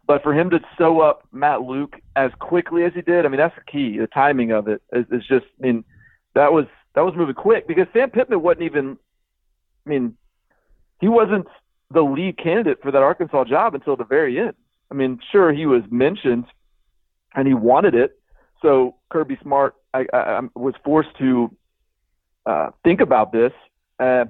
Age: 40-59